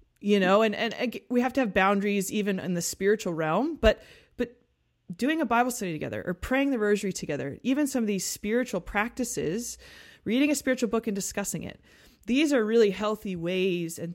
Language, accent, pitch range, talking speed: English, American, 175-235 Hz, 190 wpm